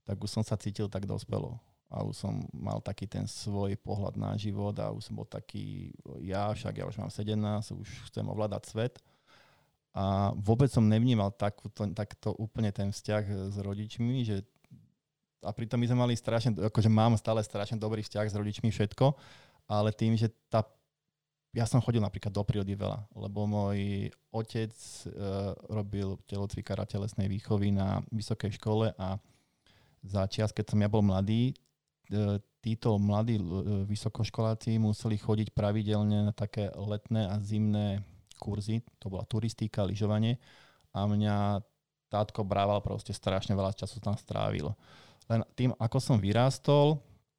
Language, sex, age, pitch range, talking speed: Slovak, male, 20-39, 100-115 Hz, 150 wpm